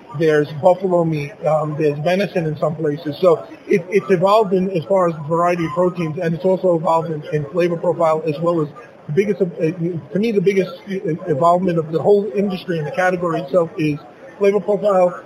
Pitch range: 155-190 Hz